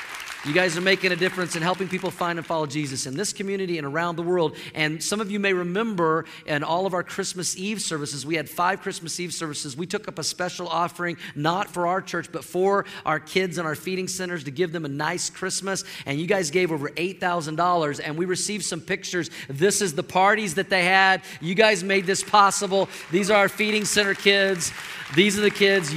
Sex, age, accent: male, 40-59, American